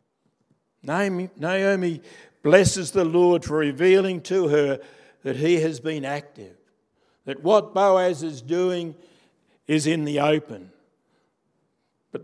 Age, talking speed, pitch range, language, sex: 60-79, 120 wpm, 125-155 Hz, English, male